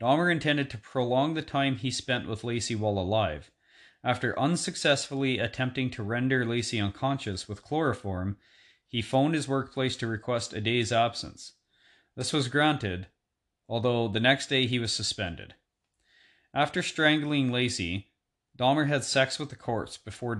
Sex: male